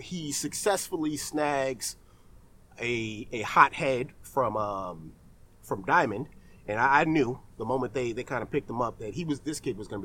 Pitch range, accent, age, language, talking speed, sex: 95-145 Hz, American, 30-49, English, 185 wpm, male